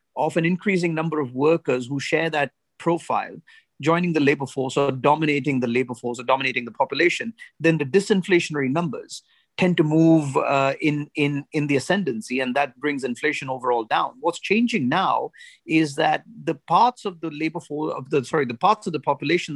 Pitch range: 145-210 Hz